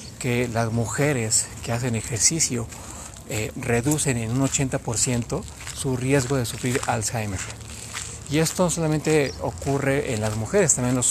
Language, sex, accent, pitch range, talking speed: Spanish, male, Mexican, 110-135 Hz, 140 wpm